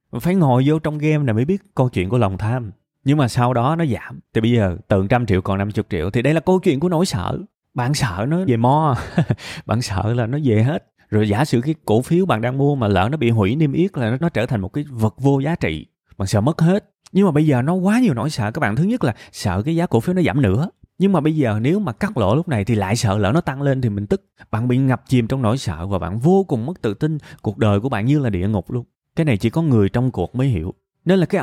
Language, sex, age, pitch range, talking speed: Vietnamese, male, 20-39, 115-170 Hz, 295 wpm